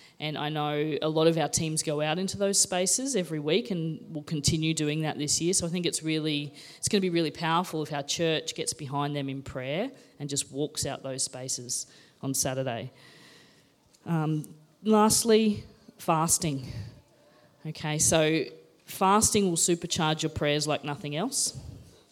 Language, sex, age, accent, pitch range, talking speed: English, female, 20-39, Australian, 145-180 Hz, 165 wpm